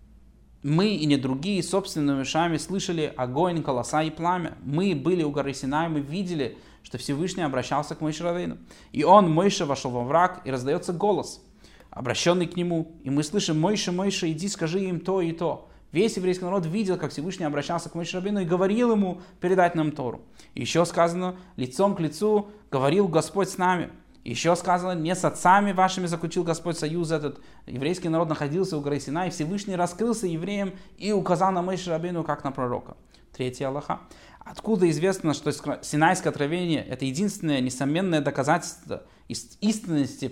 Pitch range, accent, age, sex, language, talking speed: 145-185 Hz, native, 20-39, male, Russian, 170 wpm